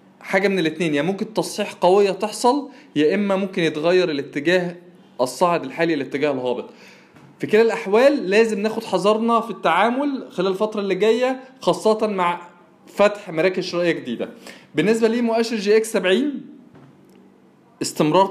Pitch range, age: 170-220 Hz, 20-39